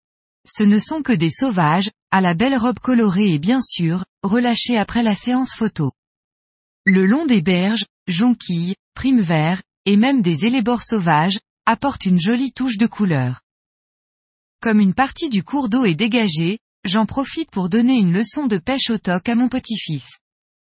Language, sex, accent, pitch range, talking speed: French, female, French, 180-250 Hz, 170 wpm